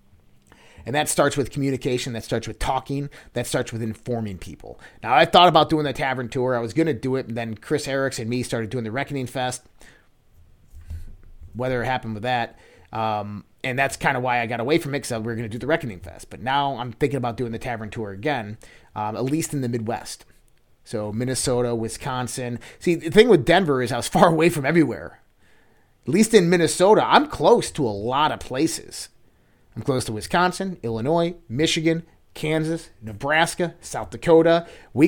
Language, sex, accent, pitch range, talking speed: English, male, American, 110-165 Hz, 200 wpm